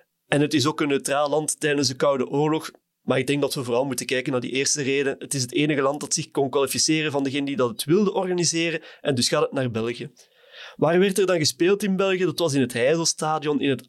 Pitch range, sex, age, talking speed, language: 140-180 Hz, male, 30-49, 255 wpm, Dutch